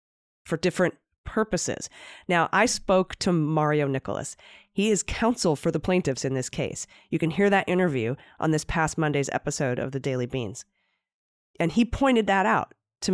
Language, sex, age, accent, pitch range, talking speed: English, female, 30-49, American, 150-190 Hz, 175 wpm